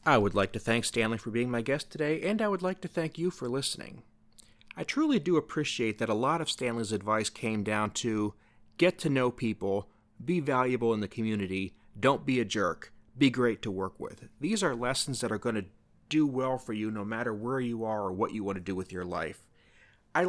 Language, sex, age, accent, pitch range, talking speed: English, male, 30-49, American, 105-130 Hz, 230 wpm